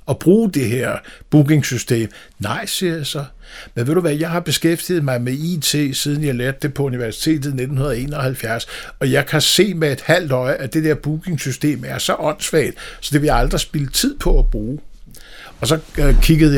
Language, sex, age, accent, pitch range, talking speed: Danish, male, 60-79, native, 125-155 Hz, 200 wpm